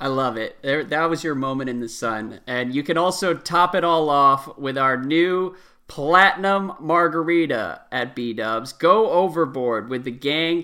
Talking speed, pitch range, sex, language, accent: 170 wpm, 120-155 Hz, male, English, American